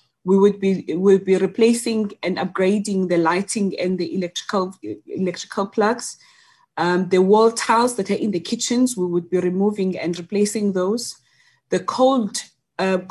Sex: female